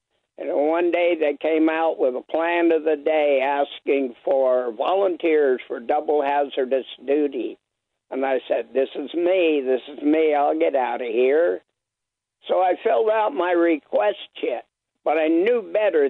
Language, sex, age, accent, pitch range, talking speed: English, male, 60-79, American, 135-170 Hz, 165 wpm